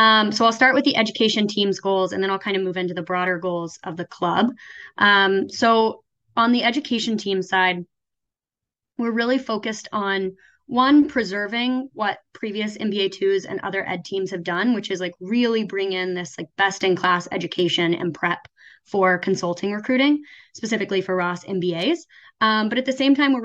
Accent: American